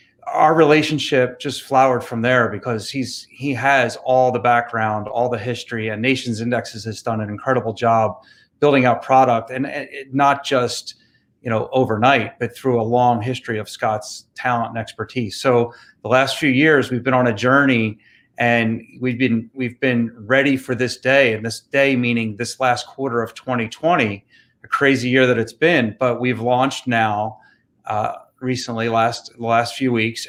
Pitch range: 115-135 Hz